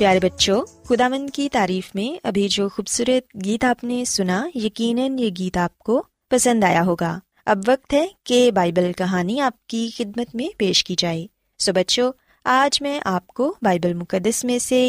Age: 20-39